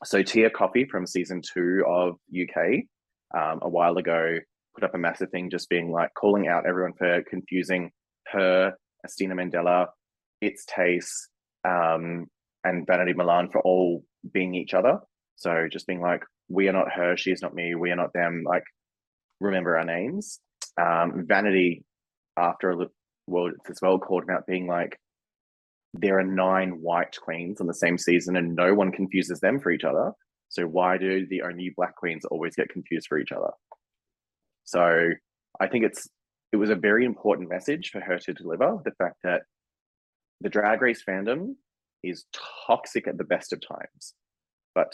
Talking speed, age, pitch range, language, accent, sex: 175 wpm, 20-39, 85-95 Hz, English, Australian, male